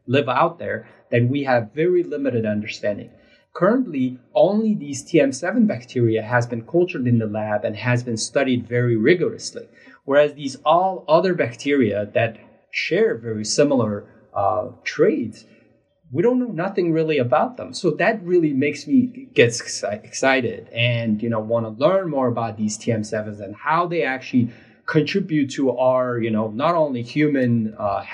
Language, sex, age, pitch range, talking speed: English, male, 30-49, 115-160 Hz, 160 wpm